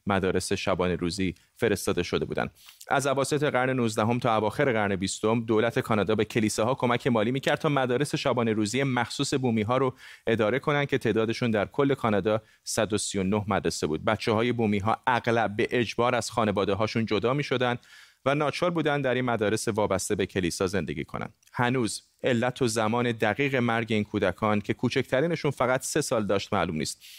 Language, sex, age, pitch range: Persian, male, 30-49, 105-125 Hz